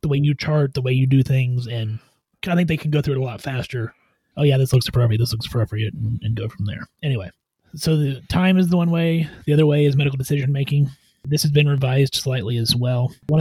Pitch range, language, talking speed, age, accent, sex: 125-150 Hz, English, 240 wpm, 30-49, American, male